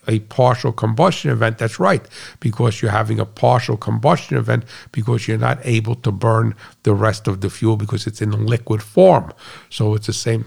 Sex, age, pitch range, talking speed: male, 50-69, 110-125 Hz, 190 wpm